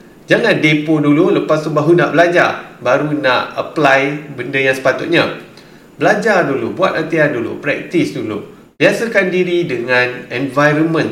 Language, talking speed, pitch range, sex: Malay, 135 wpm, 120-160 Hz, male